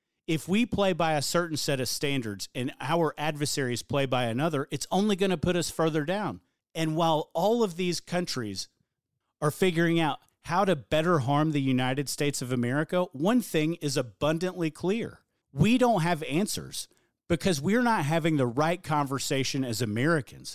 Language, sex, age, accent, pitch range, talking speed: English, male, 40-59, American, 125-175 Hz, 170 wpm